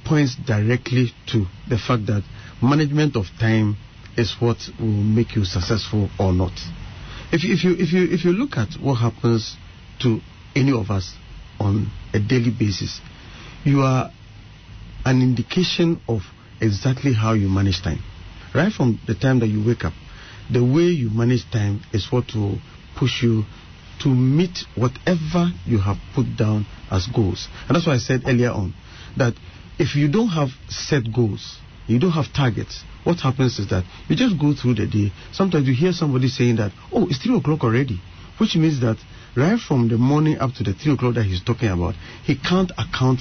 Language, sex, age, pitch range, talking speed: English, male, 50-69, 100-140 Hz, 180 wpm